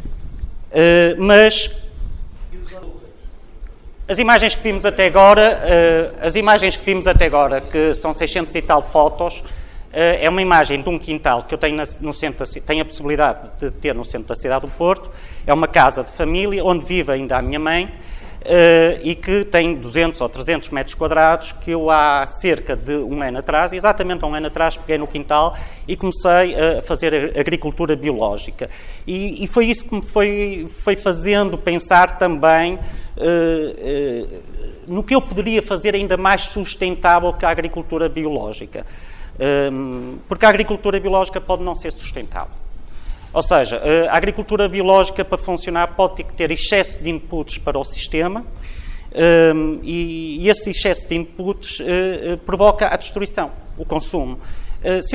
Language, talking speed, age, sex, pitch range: Portuguese, 160 wpm, 30-49, male, 150-190 Hz